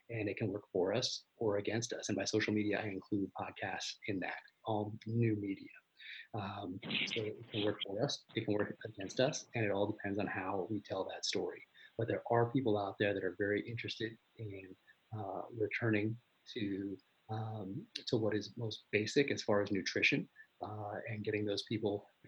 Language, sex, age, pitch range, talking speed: English, male, 30-49, 100-110 Hz, 195 wpm